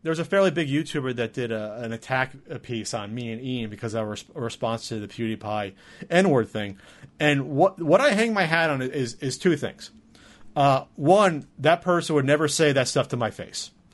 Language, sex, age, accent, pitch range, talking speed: English, male, 30-49, American, 130-175 Hz, 200 wpm